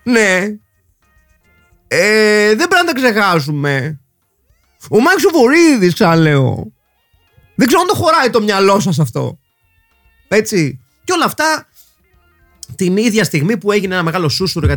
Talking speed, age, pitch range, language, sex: 135 wpm, 30-49, 135-215 Hz, Greek, male